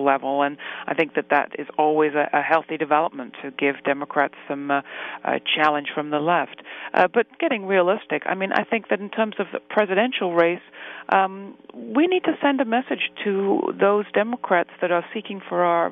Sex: female